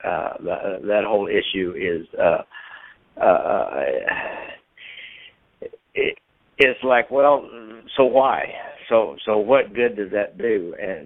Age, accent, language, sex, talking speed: 60-79, American, English, male, 110 wpm